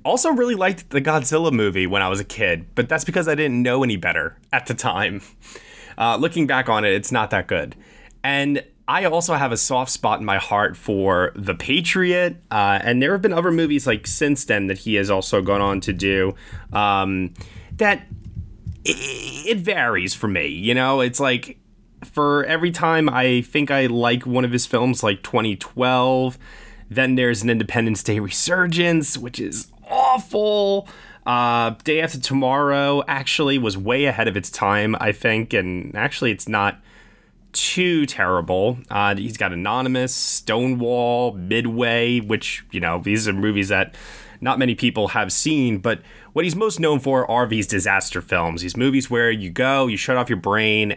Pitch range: 105-140 Hz